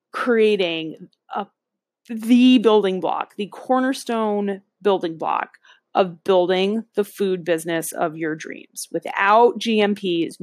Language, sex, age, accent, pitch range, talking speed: English, female, 30-49, American, 175-220 Hz, 105 wpm